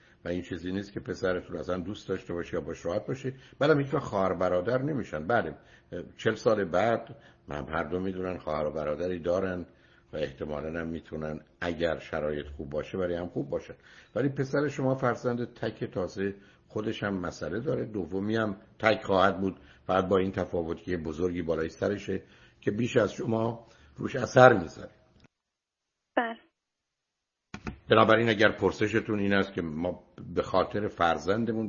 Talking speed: 150 wpm